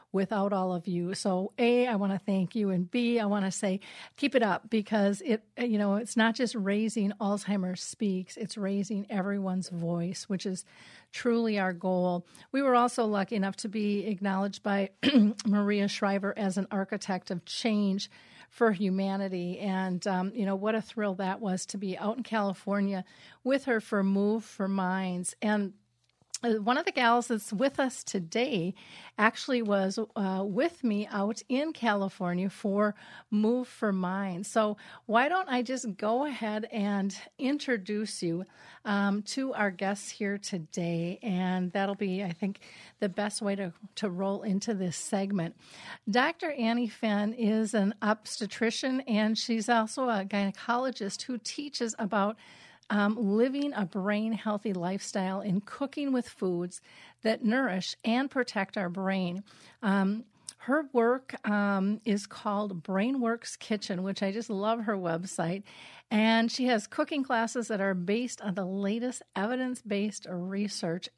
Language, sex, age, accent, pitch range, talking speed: English, female, 40-59, American, 195-230 Hz, 160 wpm